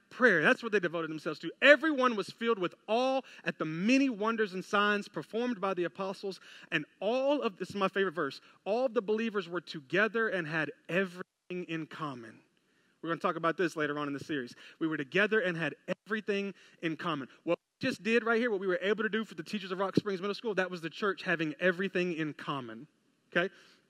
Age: 30-49